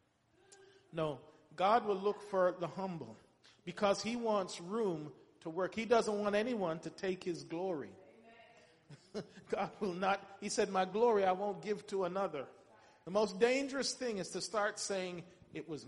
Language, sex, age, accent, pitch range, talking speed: English, male, 40-59, American, 170-210 Hz, 165 wpm